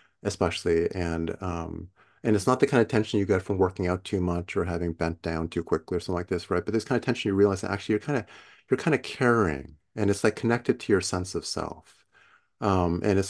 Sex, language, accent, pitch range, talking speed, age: male, English, American, 90-115 Hz, 255 wpm, 30-49